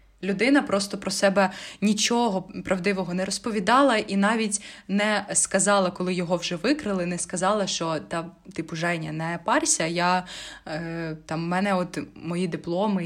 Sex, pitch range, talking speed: female, 175-215 Hz, 145 wpm